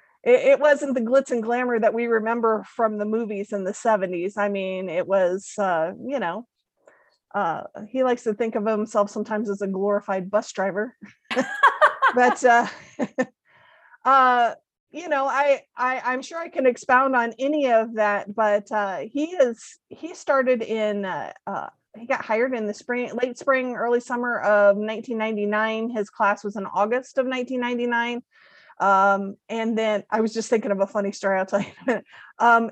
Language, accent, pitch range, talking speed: English, American, 205-245 Hz, 180 wpm